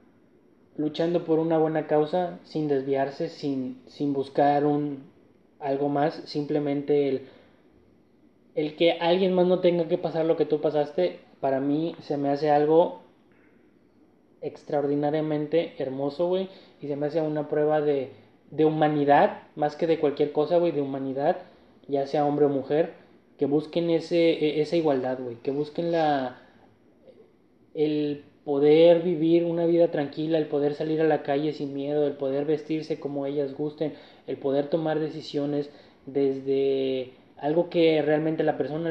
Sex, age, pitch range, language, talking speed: male, 20-39, 145-170 Hz, Spanish, 150 wpm